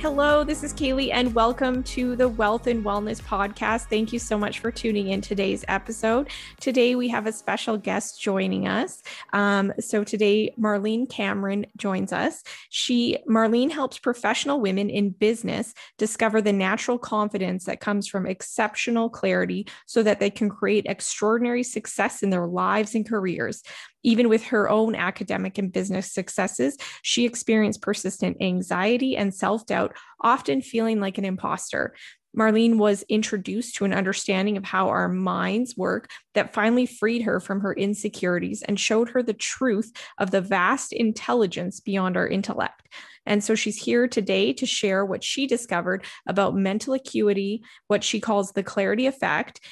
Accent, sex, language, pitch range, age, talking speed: American, female, English, 200-235 Hz, 20-39, 160 wpm